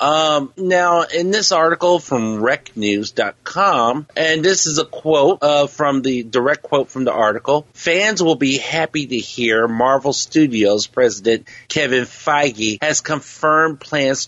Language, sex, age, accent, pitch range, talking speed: English, male, 40-59, American, 120-155 Hz, 145 wpm